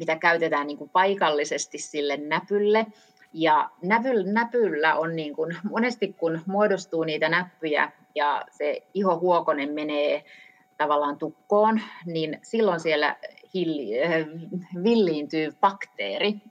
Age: 30-49